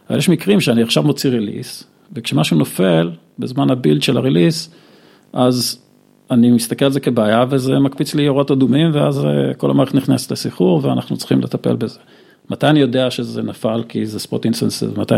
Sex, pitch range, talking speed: male, 115-145 Hz, 170 wpm